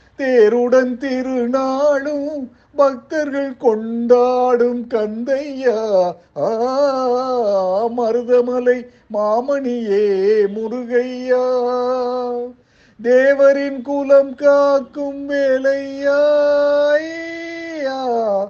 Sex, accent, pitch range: male, native, 235-260 Hz